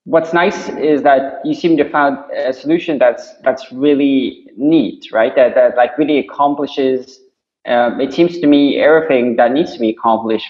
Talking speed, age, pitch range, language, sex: 175 wpm, 20-39, 120-155 Hz, English, male